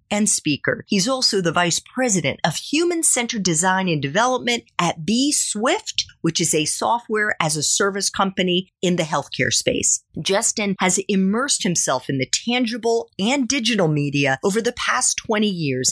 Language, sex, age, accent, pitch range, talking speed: English, female, 40-59, American, 170-260 Hz, 160 wpm